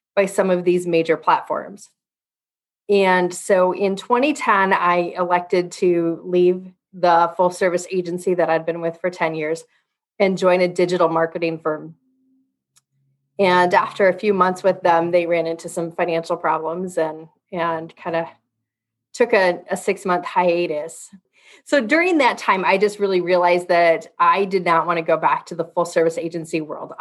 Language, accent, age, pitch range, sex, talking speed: English, American, 30-49, 165-180 Hz, female, 165 wpm